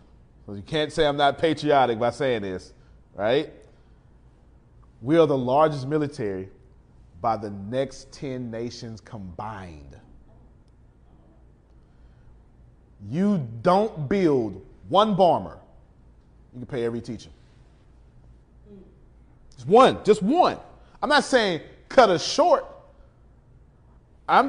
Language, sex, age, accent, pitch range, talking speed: English, male, 30-49, American, 110-175 Hz, 105 wpm